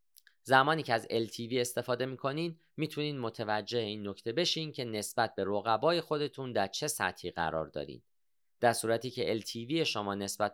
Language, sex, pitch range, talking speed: Persian, male, 100-140 Hz, 155 wpm